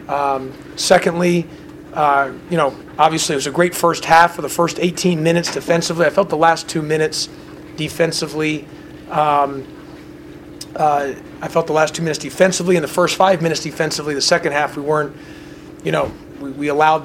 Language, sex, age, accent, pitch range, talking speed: English, male, 30-49, American, 150-175 Hz, 175 wpm